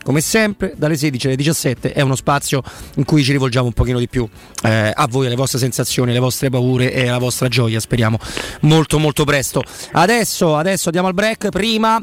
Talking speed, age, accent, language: 200 wpm, 30-49, native, Italian